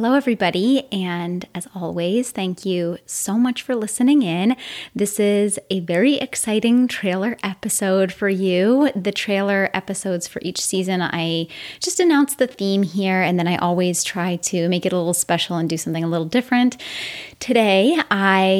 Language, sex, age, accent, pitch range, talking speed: English, female, 20-39, American, 175-220 Hz, 170 wpm